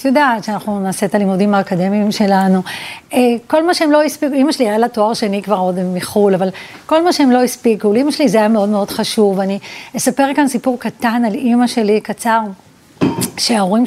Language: Hebrew